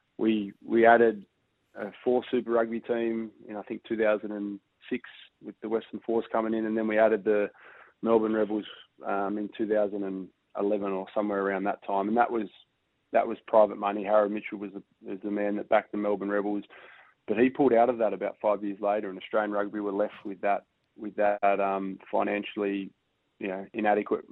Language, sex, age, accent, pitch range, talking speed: English, male, 20-39, Australian, 100-110 Hz, 190 wpm